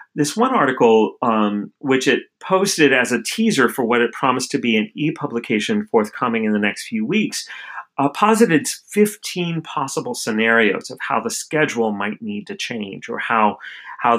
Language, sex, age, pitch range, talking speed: English, male, 40-59, 100-135 Hz, 170 wpm